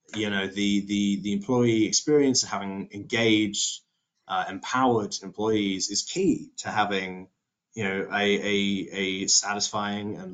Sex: male